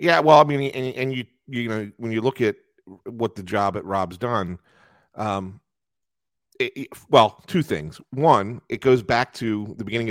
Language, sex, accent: English, male, American